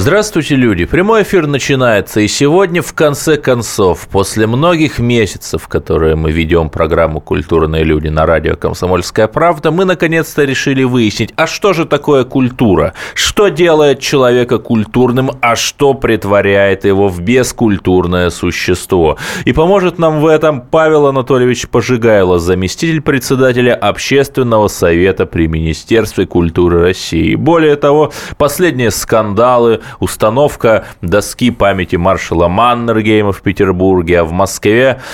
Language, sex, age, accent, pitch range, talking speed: Russian, male, 20-39, native, 85-135 Hz, 125 wpm